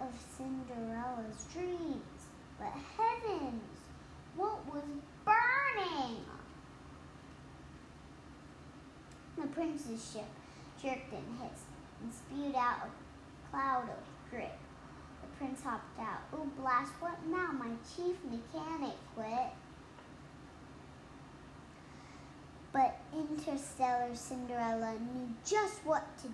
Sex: male